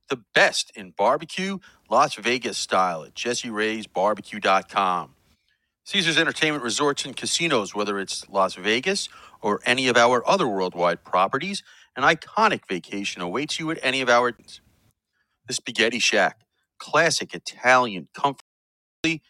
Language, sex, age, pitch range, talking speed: English, male, 40-59, 100-140 Hz, 125 wpm